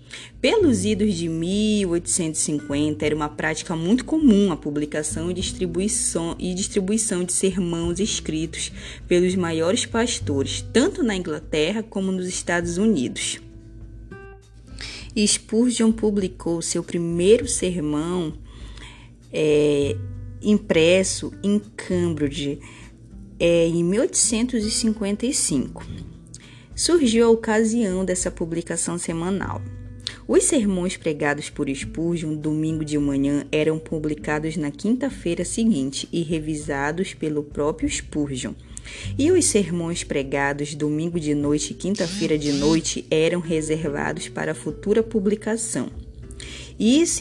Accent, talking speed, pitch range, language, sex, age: Brazilian, 100 wpm, 150-200 Hz, Portuguese, female, 20-39